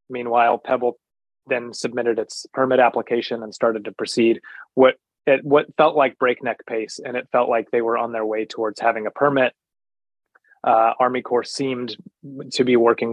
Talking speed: 175 wpm